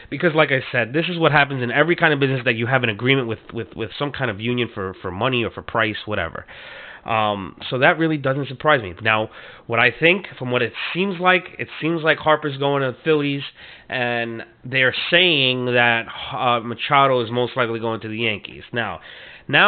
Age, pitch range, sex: 30-49, 115-155 Hz, male